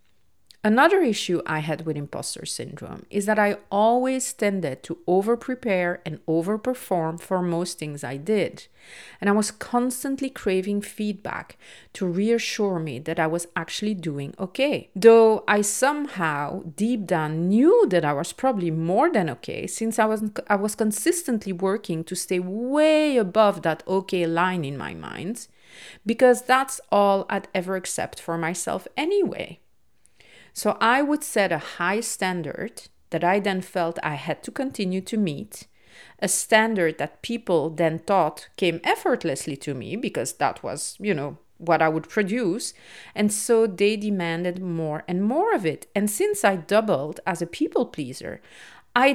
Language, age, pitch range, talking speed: English, 40-59, 170-225 Hz, 155 wpm